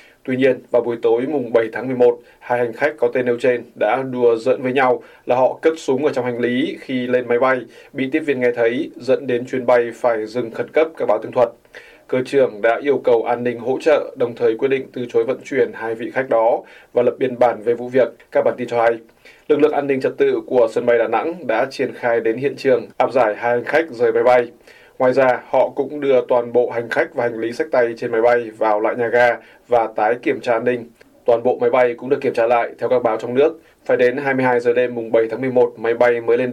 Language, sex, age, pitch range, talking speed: Vietnamese, male, 20-39, 120-135 Hz, 270 wpm